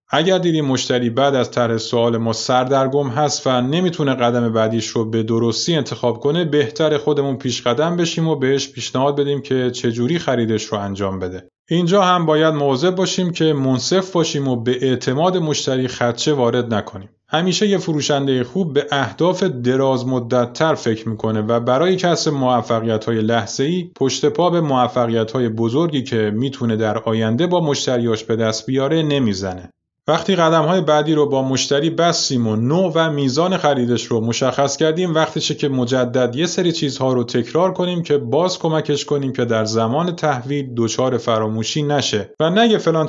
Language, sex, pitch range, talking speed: Persian, male, 115-155 Hz, 165 wpm